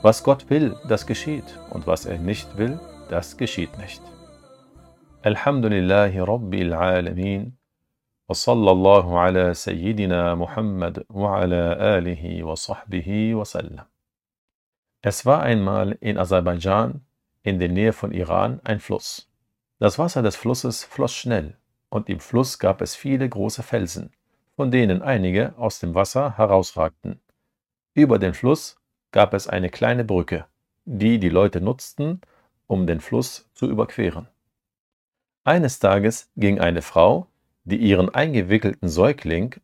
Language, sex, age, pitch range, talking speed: German, male, 50-69, 90-125 Hz, 110 wpm